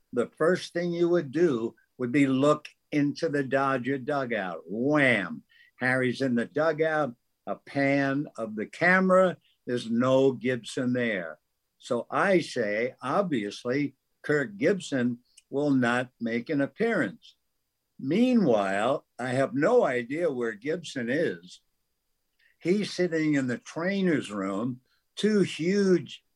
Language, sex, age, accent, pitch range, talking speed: English, male, 60-79, American, 125-160 Hz, 125 wpm